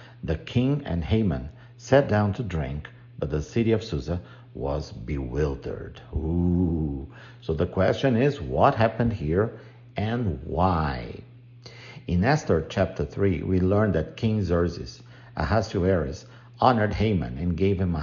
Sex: male